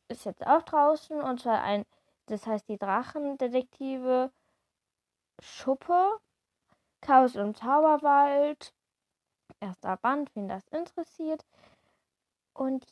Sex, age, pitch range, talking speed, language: female, 20-39, 210-270 Hz, 100 wpm, German